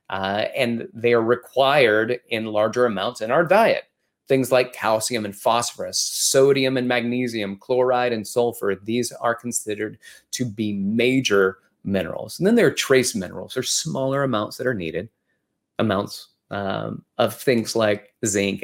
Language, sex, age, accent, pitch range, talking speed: English, male, 30-49, American, 100-130 Hz, 150 wpm